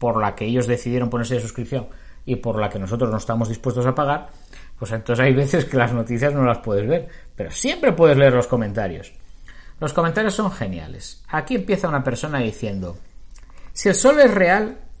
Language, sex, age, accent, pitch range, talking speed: Spanish, male, 50-69, Spanish, 115-170 Hz, 195 wpm